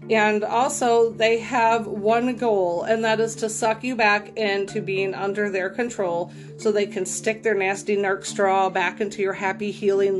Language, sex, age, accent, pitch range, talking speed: English, female, 30-49, American, 190-225 Hz, 180 wpm